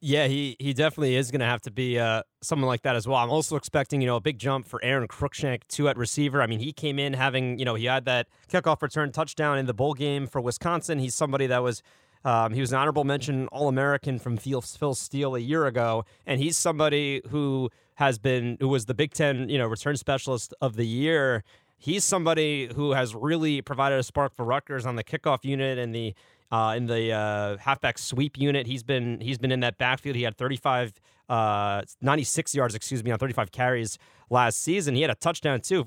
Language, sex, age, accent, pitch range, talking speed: English, male, 30-49, American, 125-150 Hz, 225 wpm